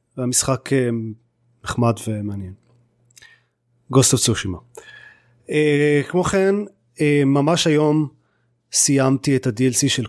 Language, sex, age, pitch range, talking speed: Hebrew, male, 30-49, 120-145 Hz, 95 wpm